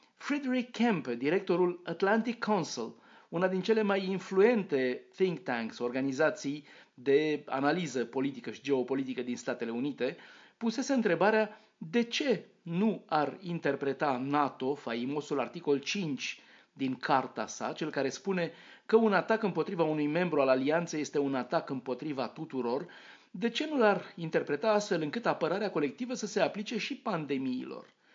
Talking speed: 140 wpm